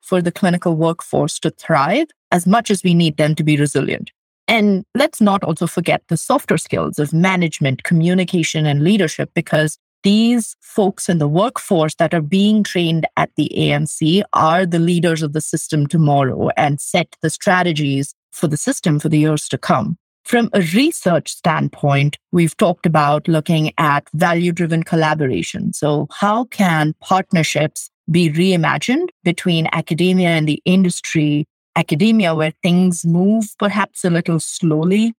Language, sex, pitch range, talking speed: English, female, 155-190 Hz, 155 wpm